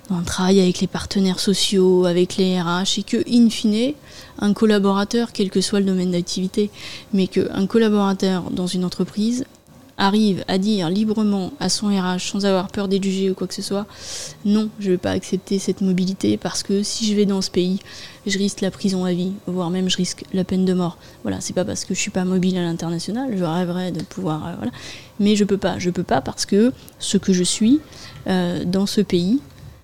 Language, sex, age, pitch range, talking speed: French, female, 20-39, 180-205 Hz, 220 wpm